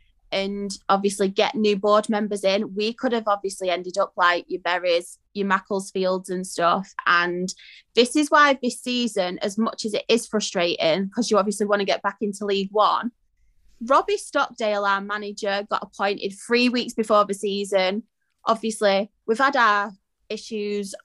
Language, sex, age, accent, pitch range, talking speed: English, female, 20-39, British, 195-230 Hz, 165 wpm